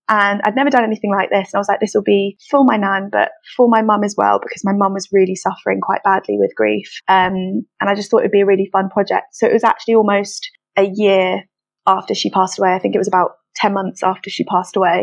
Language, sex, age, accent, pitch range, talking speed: English, female, 20-39, British, 195-225 Hz, 265 wpm